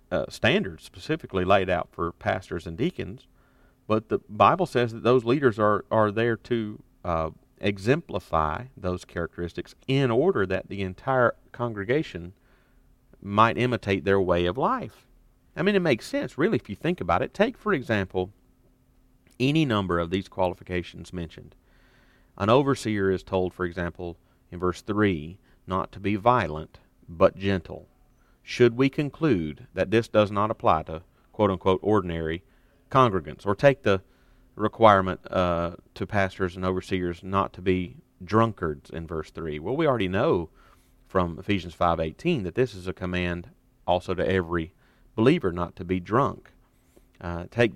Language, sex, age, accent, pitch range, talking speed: English, male, 40-59, American, 90-115 Hz, 155 wpm